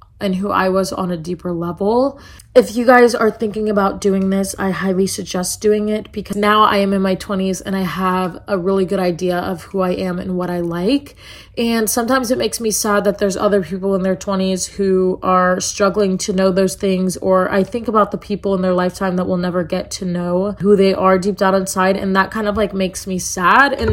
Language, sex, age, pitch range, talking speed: English, female, 20-39, 190-215 Hz, 235 wpm